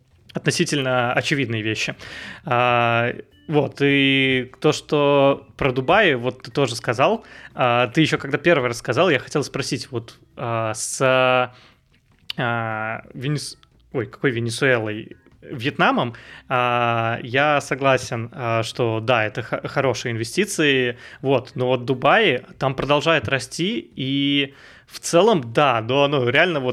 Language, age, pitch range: Russian, 20-39, 125-150 Hz